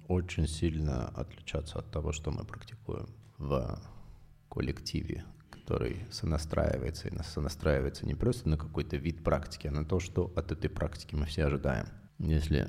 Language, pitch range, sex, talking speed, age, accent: Russian, 75-100 Hz, male, 150 wpm, 30-49, native